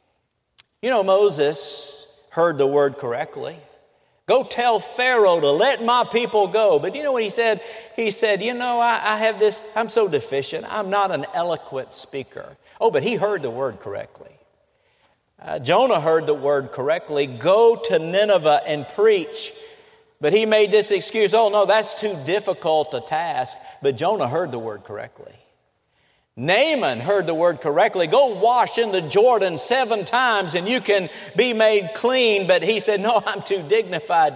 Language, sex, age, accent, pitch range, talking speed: English, male, 50-69, American, 155-230 Hz, 170 wpm